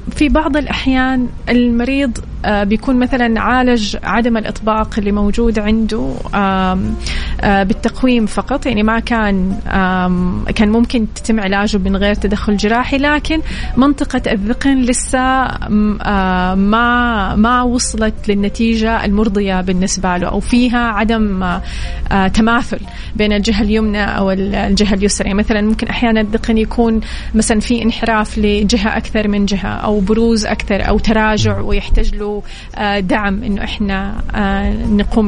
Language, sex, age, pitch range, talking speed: Arabic, female, 30-49, 200-230 Hz, 120 wpm